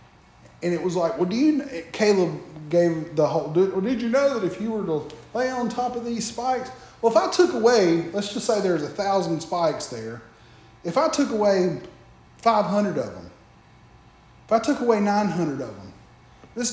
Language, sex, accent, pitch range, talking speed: English, male, American, 135-205 Hz, 195 wpm